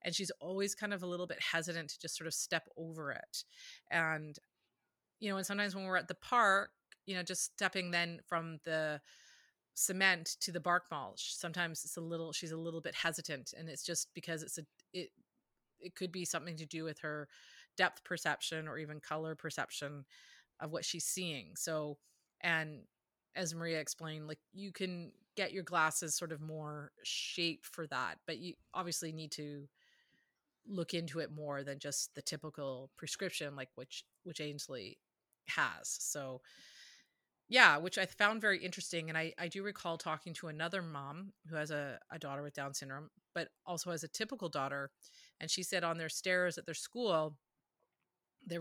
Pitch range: 155-180 Hz